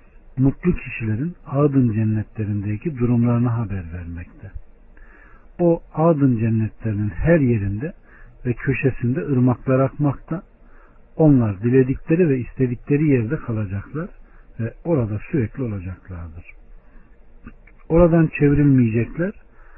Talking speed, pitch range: 85 wpm, 105-150 Hz